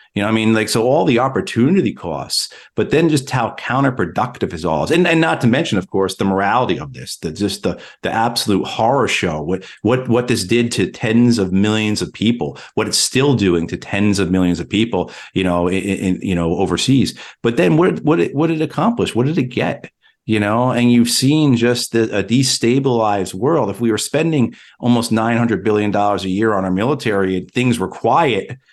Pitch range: 95-120 Hz